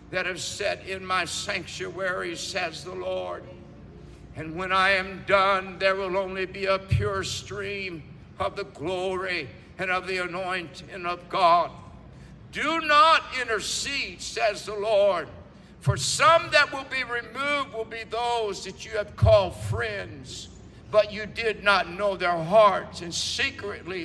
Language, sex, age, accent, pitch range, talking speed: English, male, 60-79, American, 185-210 Hz, 145 wpm